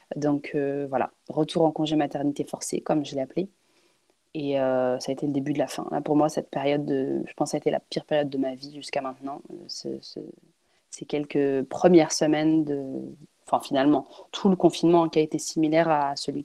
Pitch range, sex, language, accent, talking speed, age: 135-160 Hz, female, French, French, 225 wpm, 20-39